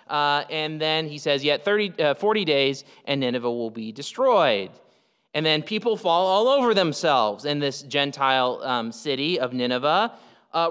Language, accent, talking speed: English, American, 155 wpm